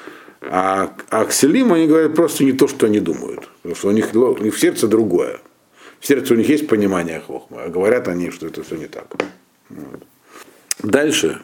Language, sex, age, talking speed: Russian, male, 50-69, 185 wpm